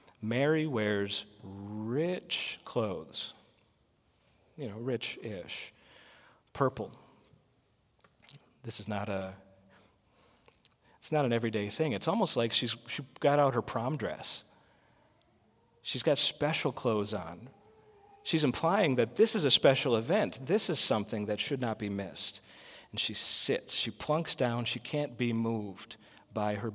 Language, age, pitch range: English, 40-59, 105-135 Hz